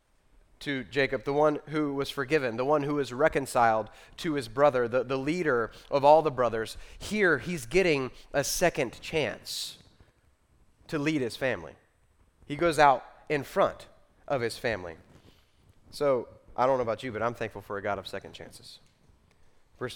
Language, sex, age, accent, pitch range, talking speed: English, male, 30-49, American, 105-140 Hz, 170 wpm